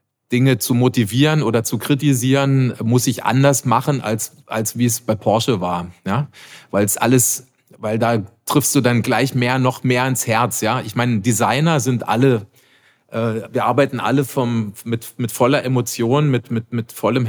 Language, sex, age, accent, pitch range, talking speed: German, male, 30-49, German, 110-130 Hz, 175 wpm